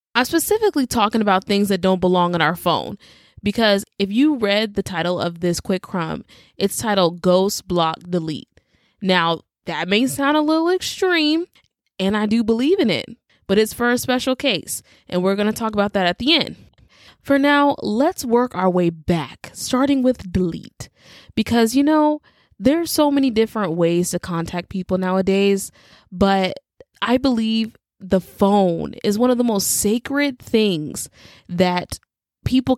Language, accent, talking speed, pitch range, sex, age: English, American, 165 wpm, 185-245 Hz, female, 20-39